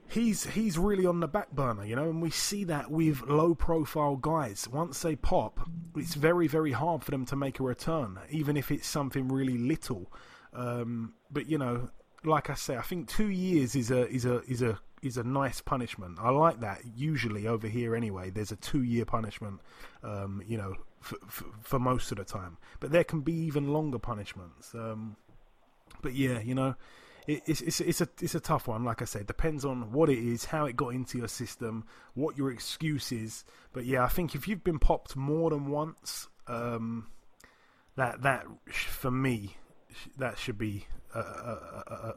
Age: 30-49